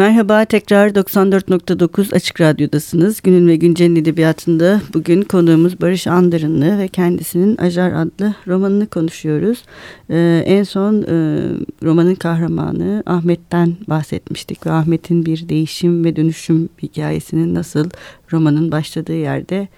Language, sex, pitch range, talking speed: Turkish, female, 155-185 Hz, 115 wpm